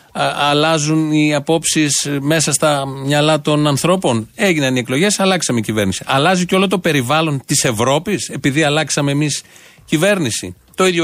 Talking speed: 145 wpm